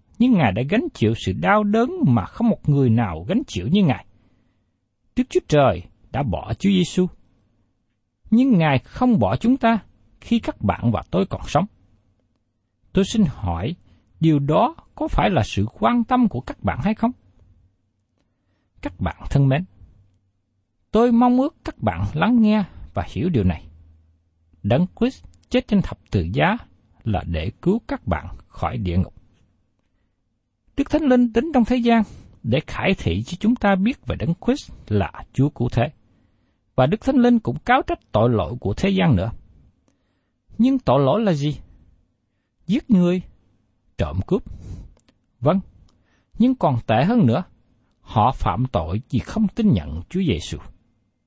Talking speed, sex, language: 165 wpm, male, Vietnamese